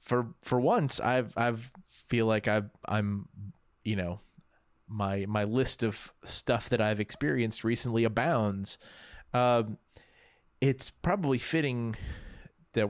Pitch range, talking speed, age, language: 105-130 Hz, 120 wpm, 30-49, English